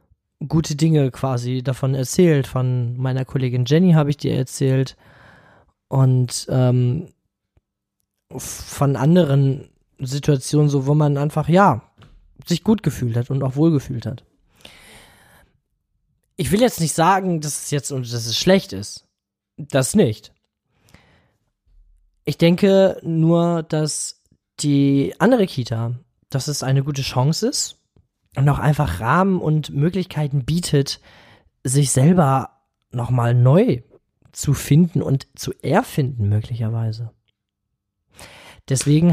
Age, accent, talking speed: 20-39, German, 115 wpm